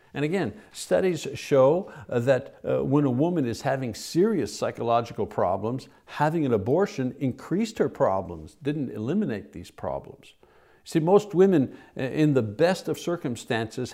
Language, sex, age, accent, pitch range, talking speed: English, male, 60-79, American, 120-160 Hz, 135 wpm